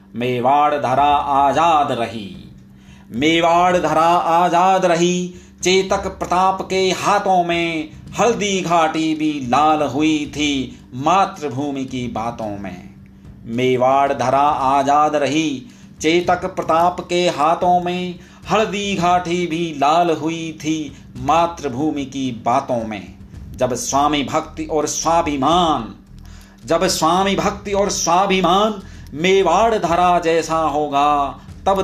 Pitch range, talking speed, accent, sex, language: 125-170 Hz, 105 wpm, native, male, Hindi